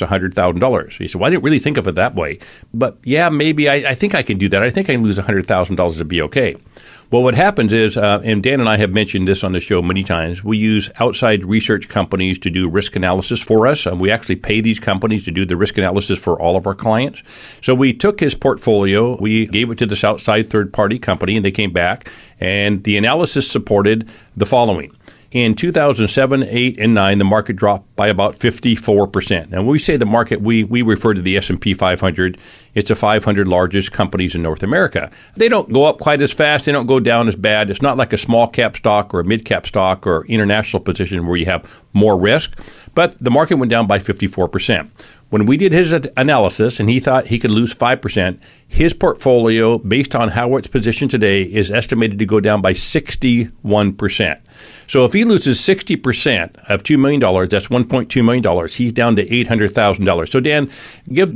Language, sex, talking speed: English, male, 210 wpm